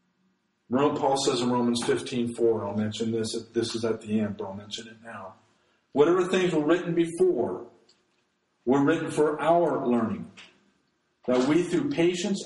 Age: 50-69